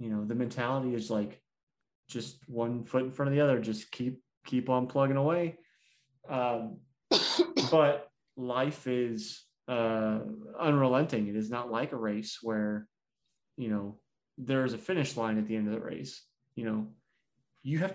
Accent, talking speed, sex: American, 165 wpm, male